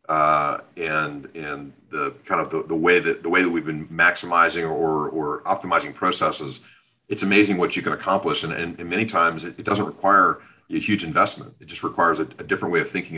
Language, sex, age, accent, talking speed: English, male, 40-59, American, 215 wpm